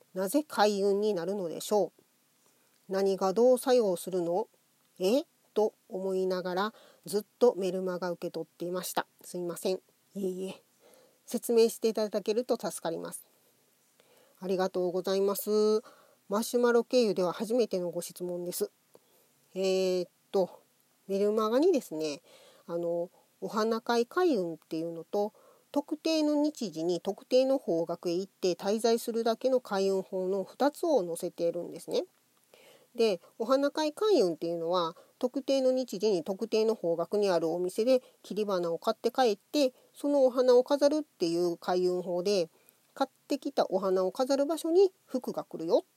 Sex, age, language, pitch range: female, 40-59, Japanese, 180-265 Hz